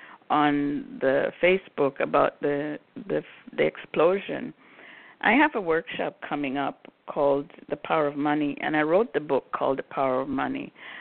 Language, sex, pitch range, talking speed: English, female, 150-175 Hz, 160 wpm